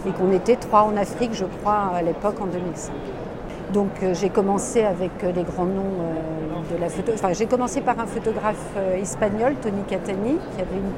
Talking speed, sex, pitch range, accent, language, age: 185 wpm, female, 175-220 Hz, French, French, 50-69